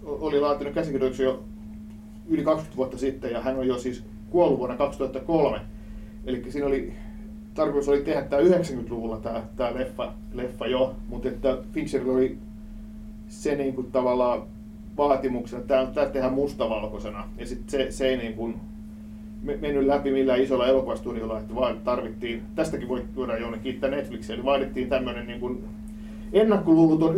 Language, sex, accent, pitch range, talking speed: Finnish, male, native, 105-140 Hz, 140 wpm